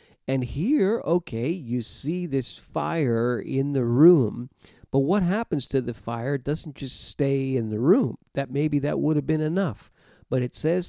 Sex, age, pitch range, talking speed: male, 50-69, 120-155 Hz, 175 wpm